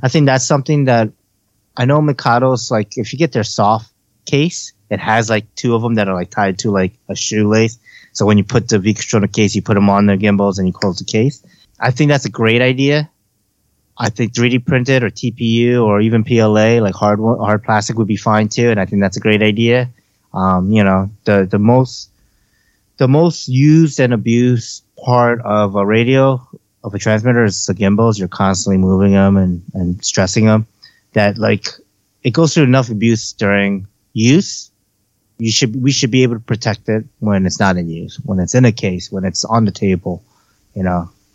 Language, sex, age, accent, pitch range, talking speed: English, male, 30-49, Japanese, 100-120 Hz, 205 wpm